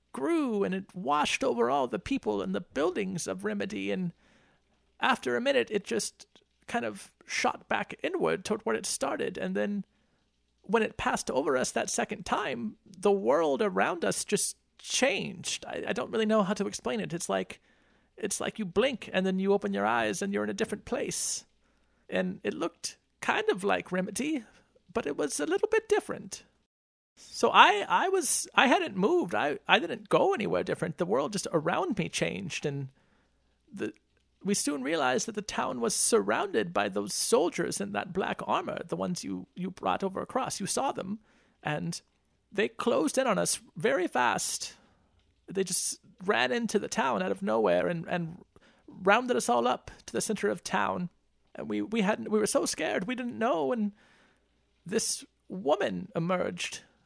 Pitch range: 150-225 Hz